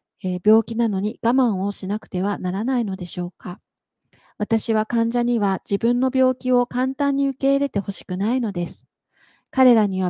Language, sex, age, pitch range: Japanese, female, 40-59, 195-260 Hz